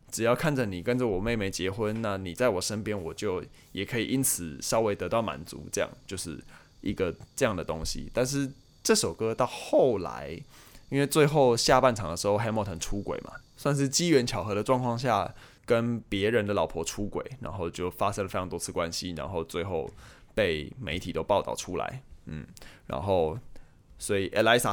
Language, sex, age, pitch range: Chinese, male, 20-39, 90-125 Hz